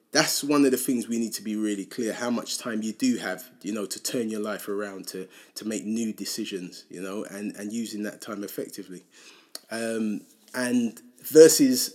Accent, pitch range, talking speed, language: British, 110-160 Hz, 200 wpm, English